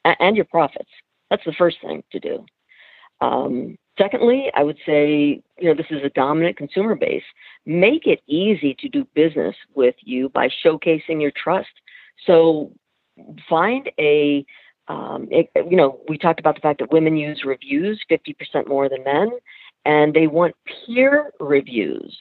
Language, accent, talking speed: English, American, 160 wpm